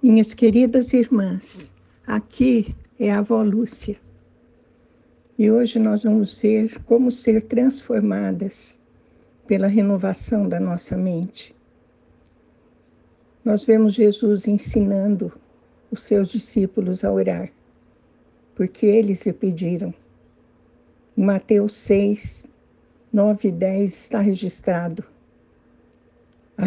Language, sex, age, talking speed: Portuguese, female, 60-79, 95 wpm